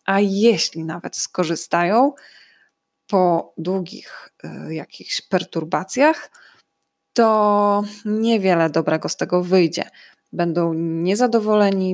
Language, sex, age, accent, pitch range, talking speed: Polish, female, 20-39, native, 165-210 Hz, 85 wpm